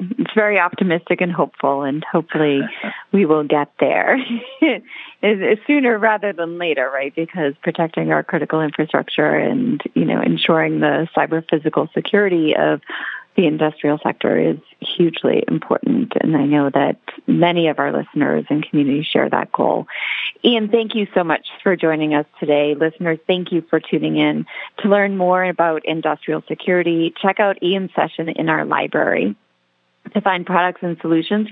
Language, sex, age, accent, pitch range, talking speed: English, female, 30-49, American, 155-185 Hz, 155 wpm